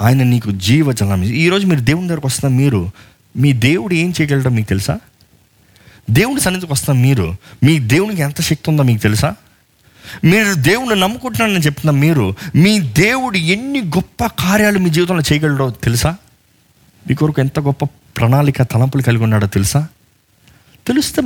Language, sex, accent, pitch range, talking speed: Telugu, male, native, 130-215 Hz, 140 wpm